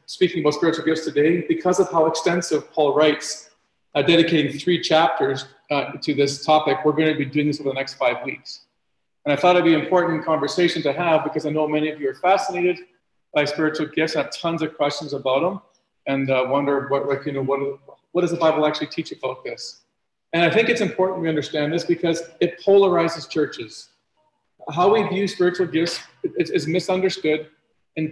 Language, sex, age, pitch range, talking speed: English, male, 40-59, 150-170 Hz, 190 wpm